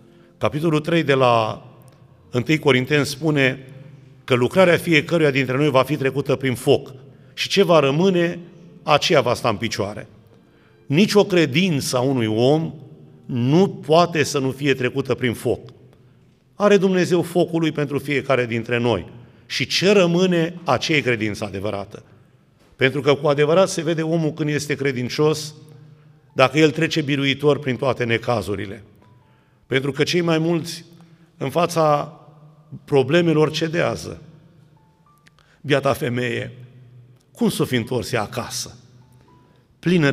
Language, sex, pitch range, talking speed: Romanian, male, 125-160 Hz, 130 wpm